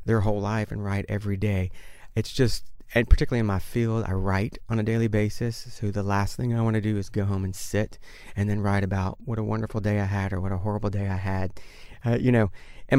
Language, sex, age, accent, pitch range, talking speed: English, male, 40-59, American, 100-115 Hz, 250 wpm